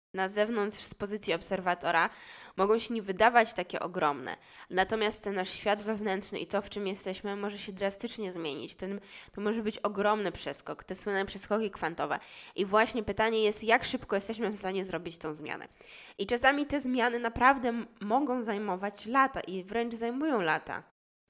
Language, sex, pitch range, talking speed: Polish, female, 180-220 Hz, 165 wpm